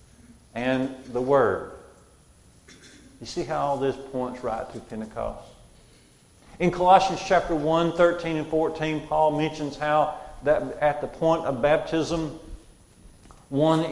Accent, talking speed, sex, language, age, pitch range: American, 125 wpm, male, English, 50-69, 130-165 Hz